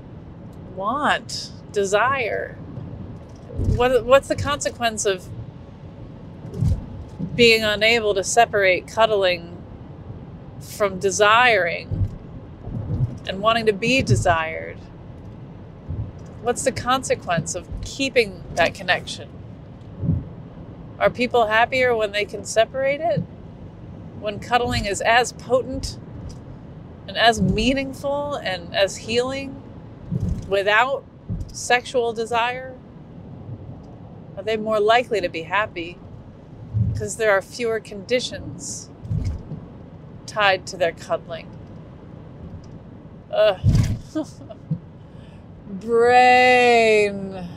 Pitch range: 180-235 Hz